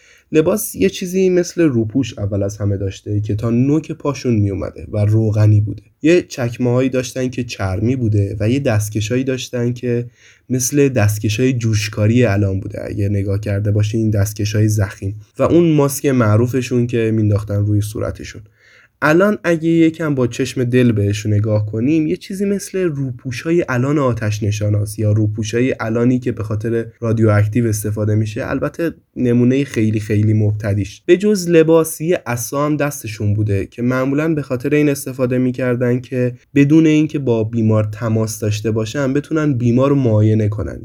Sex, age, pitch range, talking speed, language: male, 20-39, 105-135 Hz, 160 wpm, Persian